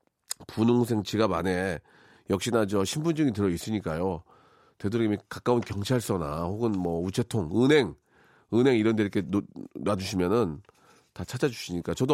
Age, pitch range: 40-59, 95-140 Hz